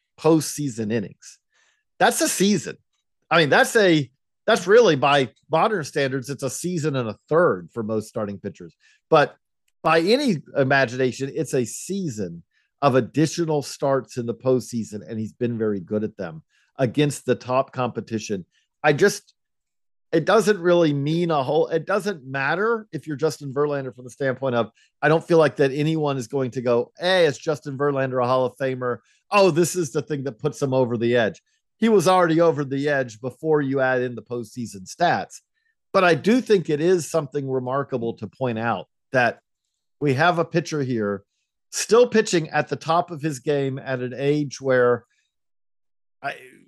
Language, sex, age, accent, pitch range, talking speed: English, male, 50-69, American, 125-165 Hz, 180 wpm